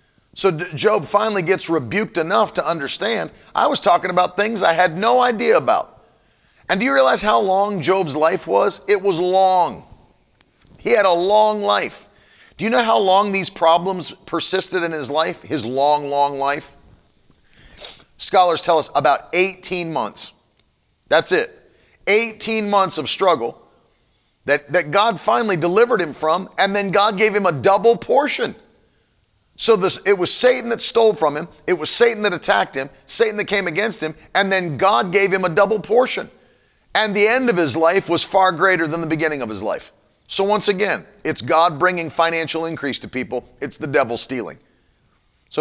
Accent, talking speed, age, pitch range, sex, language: American, 175 wpm, 40-59, 160-205 Hz, male, English